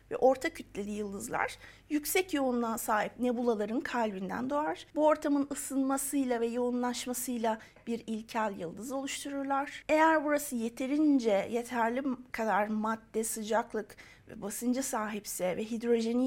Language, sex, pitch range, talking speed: Turkish, female, 225-285 Hz, 115 wpm